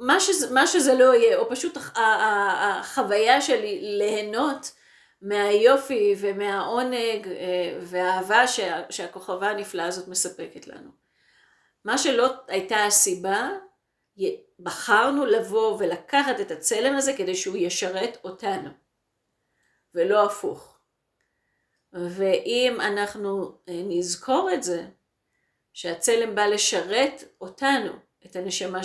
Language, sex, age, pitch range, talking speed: Hebrew, female, 40-59, 185-275 Hz, 100 wpm